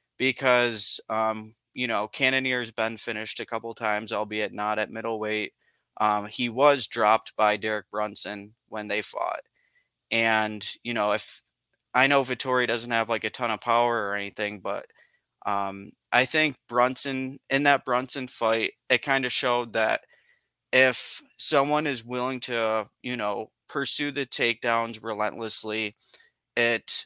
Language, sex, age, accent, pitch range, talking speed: English, male, 20-39, American, 110-130 Hz, 145 wpm